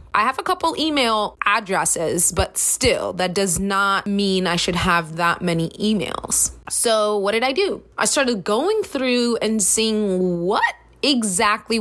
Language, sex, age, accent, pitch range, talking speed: English, female, 20-39, American, 190-260 Hz, 160 wpm